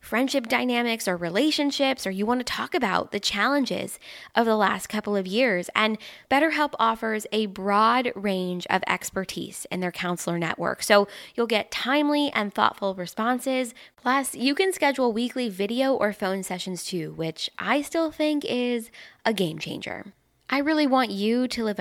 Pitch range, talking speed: 195-260 Hz, 170 wpm